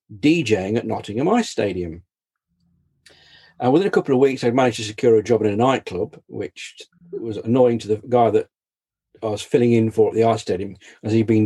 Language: English